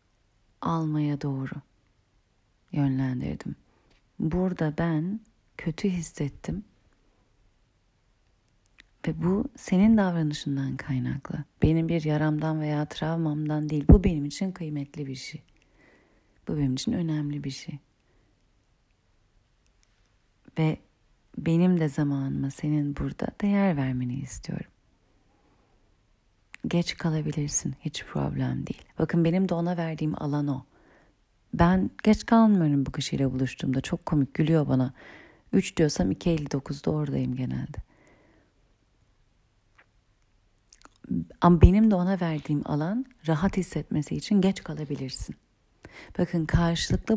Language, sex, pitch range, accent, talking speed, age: Turkish, female, 115-170 Hz, native, 100 wpm, 40-59